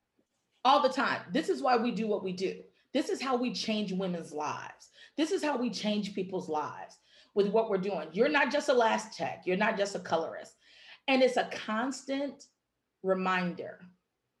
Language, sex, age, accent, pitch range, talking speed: English, female, 40-59, American, 190-255 Hz, 190 wpm